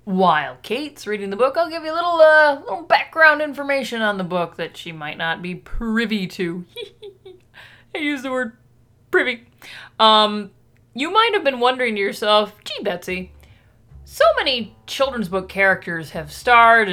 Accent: American